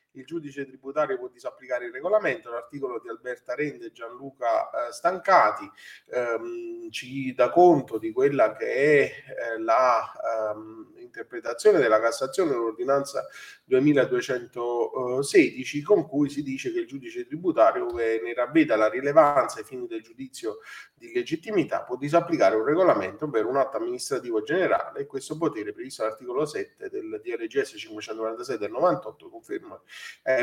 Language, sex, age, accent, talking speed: Italian, male, 30-49, native, 145 wpm